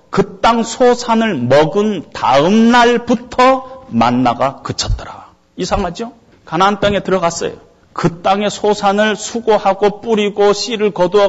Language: Korean